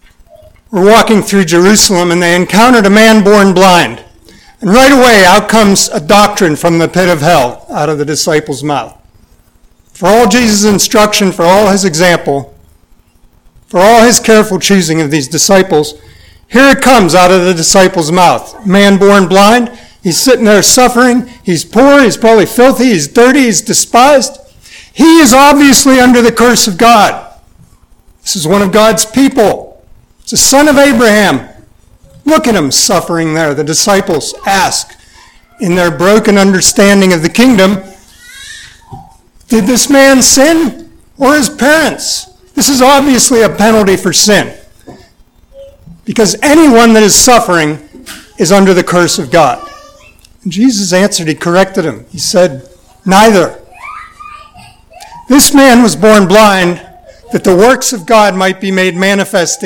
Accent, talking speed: American, 150 wpm